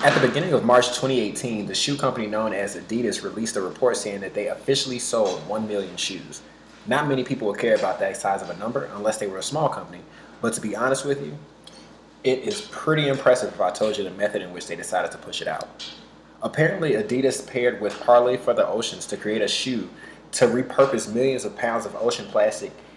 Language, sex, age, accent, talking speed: English, male, 20-39, American, 220 wpm